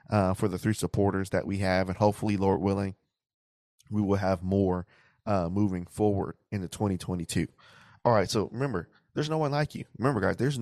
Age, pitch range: 20-39, 95-120 Hz